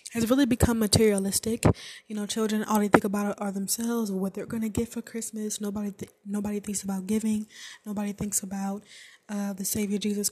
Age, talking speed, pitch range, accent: 10-29, 190 wpm, 200-225 Hz, American